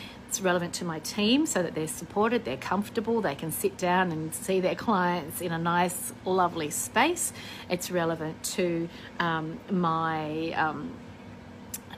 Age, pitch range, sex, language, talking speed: 40-59, 170-230 Hz, female, English, 150 wpm